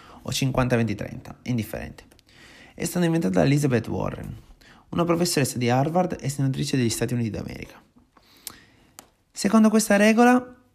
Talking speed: 125 wpm